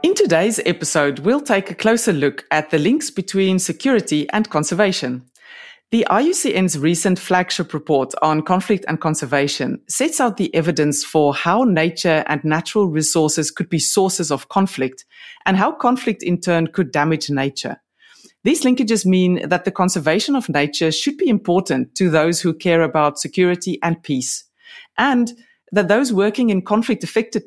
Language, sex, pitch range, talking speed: German, female, 155-210 Hz, 155 wpm